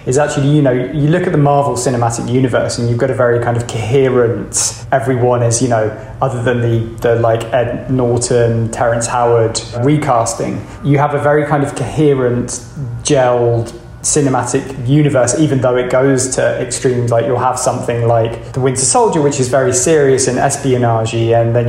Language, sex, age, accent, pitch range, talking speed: English, male, 20-39, British, 120-145 Hz, 180 wpm